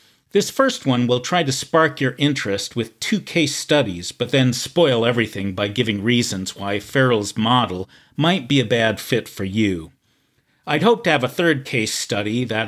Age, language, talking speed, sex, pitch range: 50-69, English, 185 wpm, male, 105-140 Hz